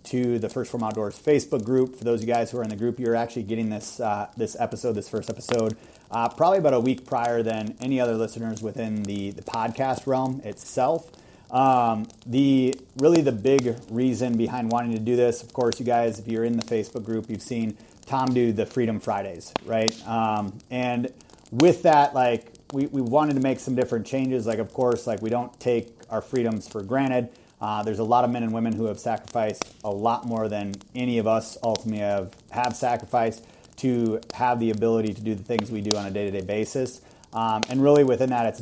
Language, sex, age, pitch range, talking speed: English, male, 30-49, 110-125 Hz, 215 wpm